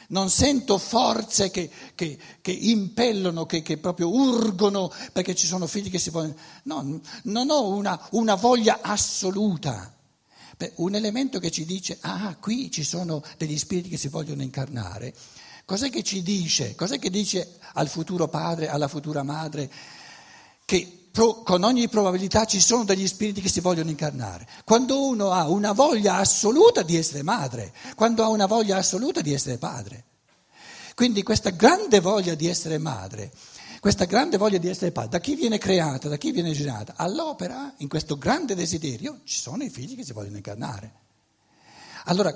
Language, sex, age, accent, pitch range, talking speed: Italian, male, 60-79, native, 145-210 Hz, 165 wpm